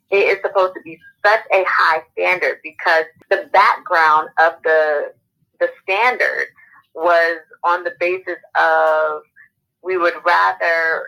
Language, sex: English, female